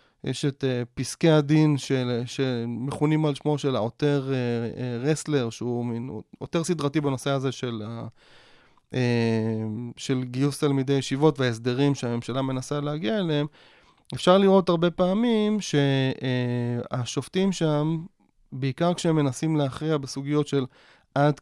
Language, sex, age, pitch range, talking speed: Hebrew, male, 30-49, 125-155 Hz, 125 wpm